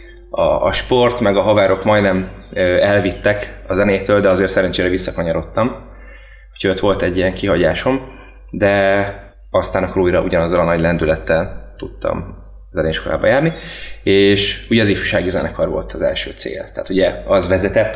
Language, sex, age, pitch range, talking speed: Hungarian, male, 30-49, 95-105 Hz, 145 wpm